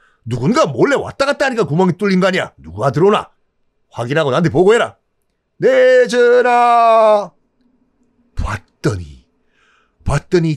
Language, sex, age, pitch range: Korean, male, 40-59, 160-250 Hz